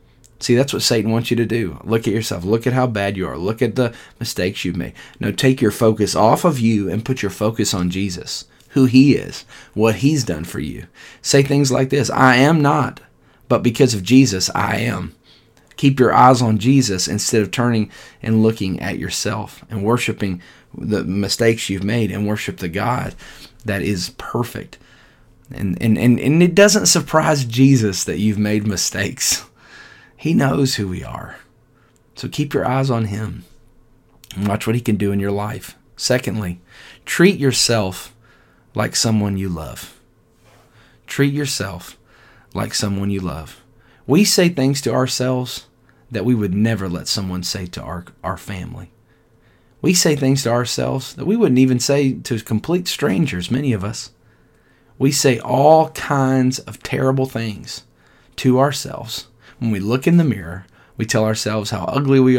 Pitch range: 105-130 Hz